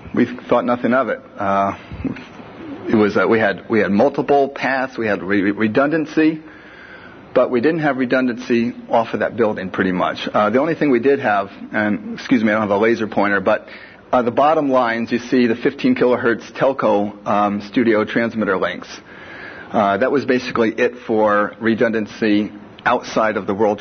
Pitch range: 110-130 Hz